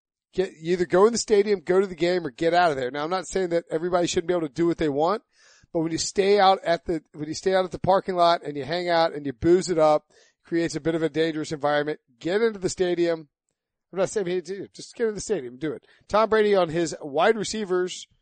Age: 40-59